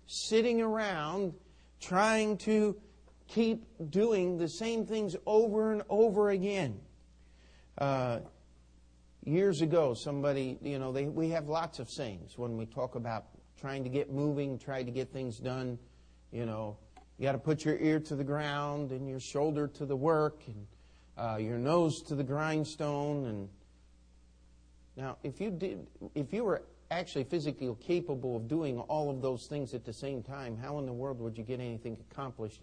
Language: English